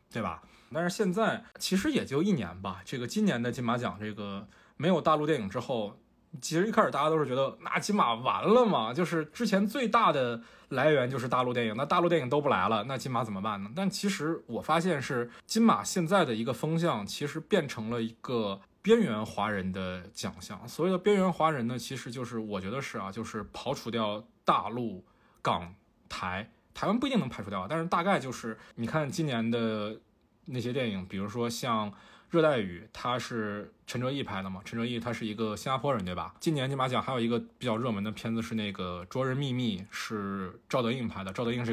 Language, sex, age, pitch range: Chinese, male, 20-39, 110-170 Hz